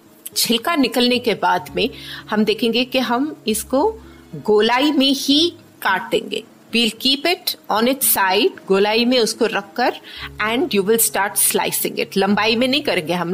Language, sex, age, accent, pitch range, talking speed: Hindi, female, 30-49, native, 195-245 Hz, 160 wpm